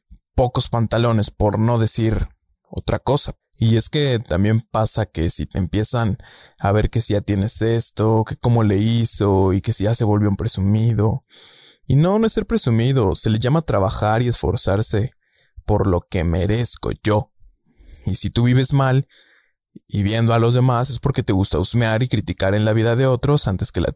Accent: Mexican